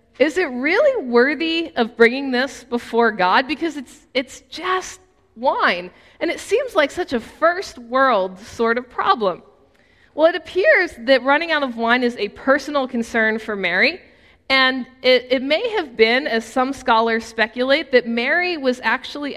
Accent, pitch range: American, 230-300 Hz